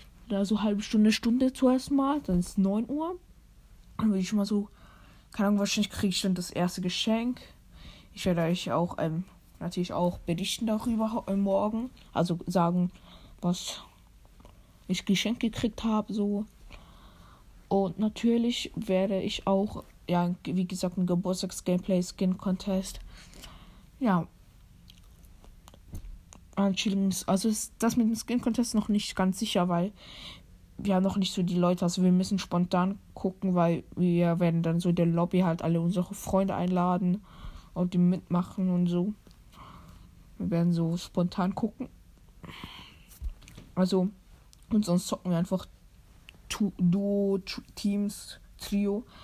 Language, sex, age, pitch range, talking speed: German, female, 20-39, 175-210 Hz, 140 wpm